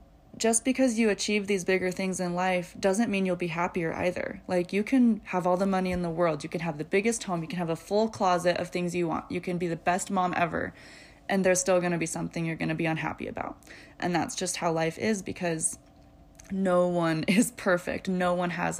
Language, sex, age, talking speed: English, female, 20-39, 235 wpm